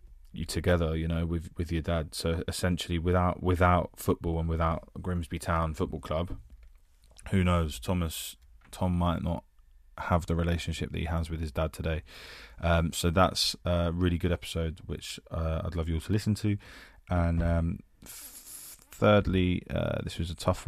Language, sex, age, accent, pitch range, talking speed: English, male, 20-39, British, 80-90 Hz, 175 wpm